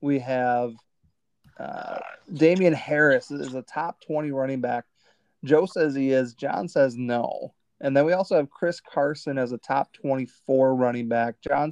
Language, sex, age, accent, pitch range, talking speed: English, male, 30-49, American, 125-140 Hz, 165 wpm